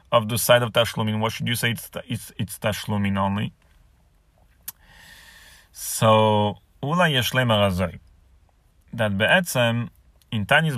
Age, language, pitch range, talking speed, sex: 30-49, English, 95-140 Hz, 115 wpm, male